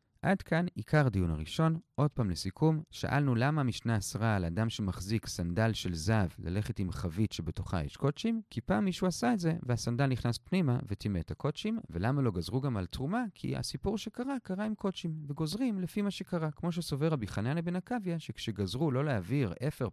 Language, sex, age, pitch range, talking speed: Hebrew, male, 40-59, 100-160 Hz, 185 wpm